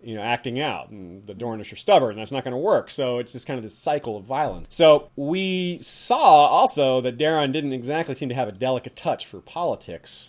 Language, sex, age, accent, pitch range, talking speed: English, male, 30-49, American, 120-155 Hz, 235 wpm